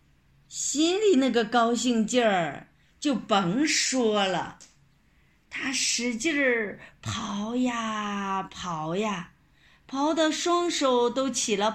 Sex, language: female, Chinese